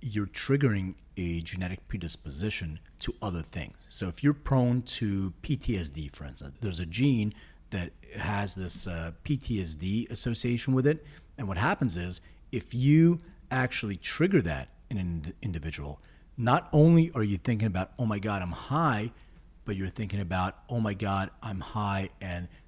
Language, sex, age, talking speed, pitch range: English, male, 40-59, 160 wpm, 85-120 Hz